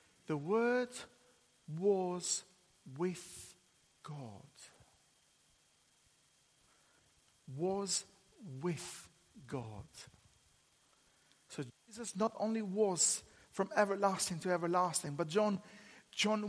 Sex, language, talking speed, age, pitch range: male, English, 75 wpm, 50-69, 155-225 Hz